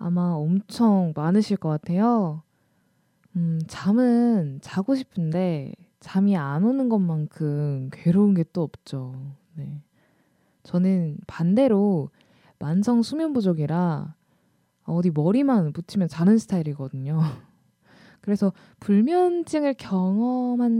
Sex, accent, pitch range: female, native, 160-230 Hz